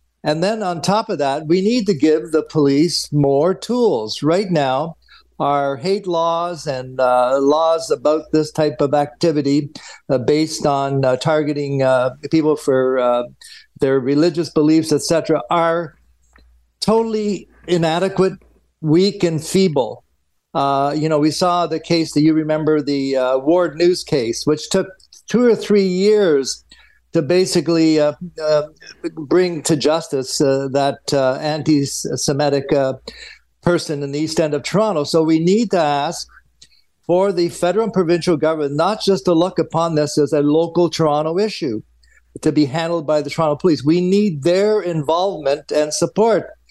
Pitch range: 145-175 Hz